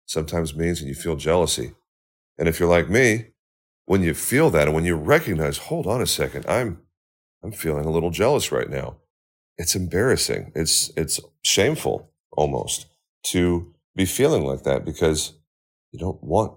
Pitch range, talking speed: 75-100 Hz, 165 wpm